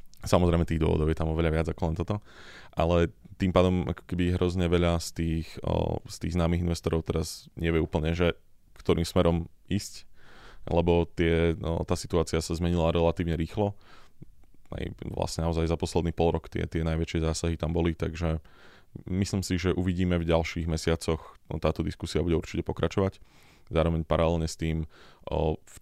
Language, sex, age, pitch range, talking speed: Slovak, male, 20-39, 80-85 Hz, 165 wpm